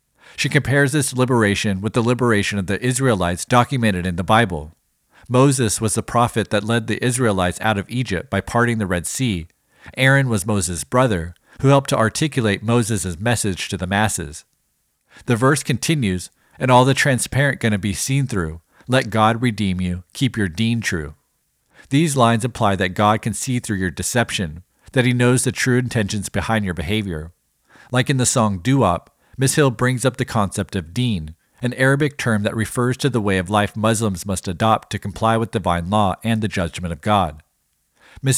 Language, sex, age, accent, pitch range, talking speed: English, male, 50-69, American, 95-125 Hz, 185 wpm